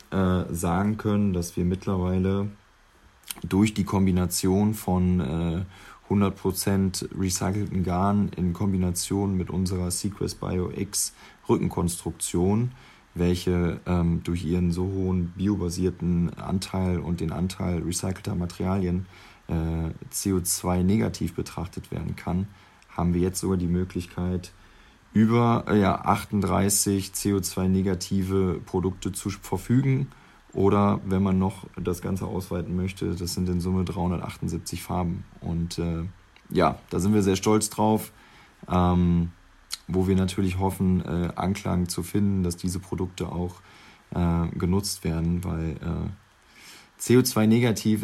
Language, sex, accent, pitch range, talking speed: German, male, German, 90-100 Hz, 110 wpm